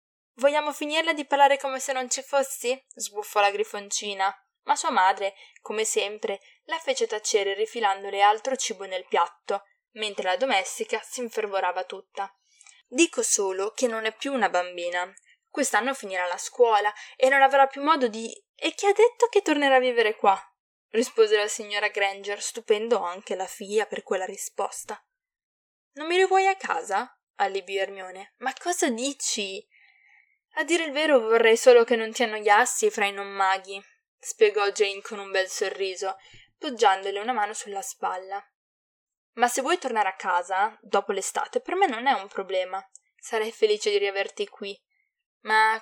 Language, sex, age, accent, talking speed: Italian, female, 10-29, native, 160 wpm